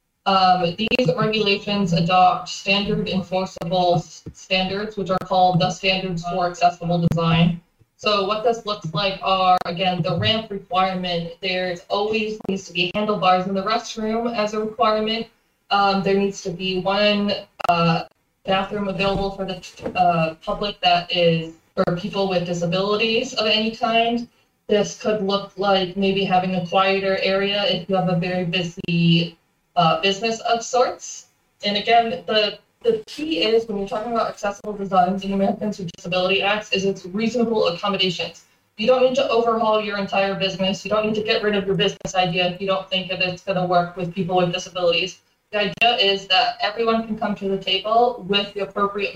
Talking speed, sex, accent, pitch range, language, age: 175 wpm, female, American, 180-210 Hz, English, 20-39